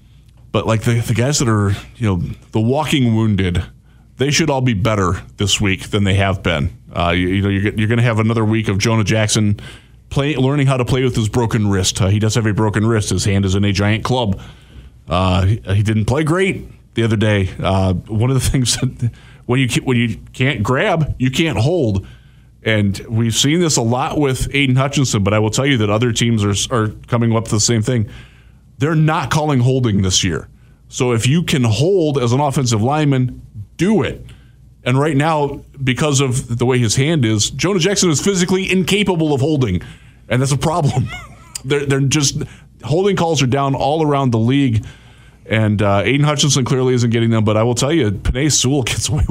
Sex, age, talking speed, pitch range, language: male, 20-39, 215 wpm, 110-140 Hz, English